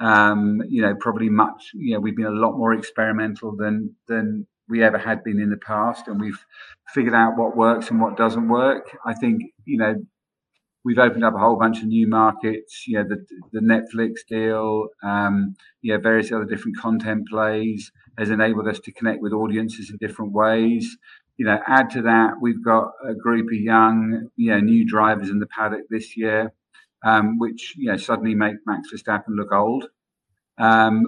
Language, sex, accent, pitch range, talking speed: English, male, British, 110-115 Hz, 195 wpm